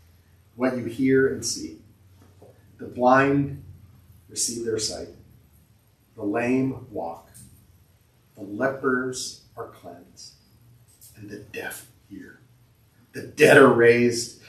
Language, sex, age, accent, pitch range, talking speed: English, male, 40-59, American, 105-130 Hz, 105 wpm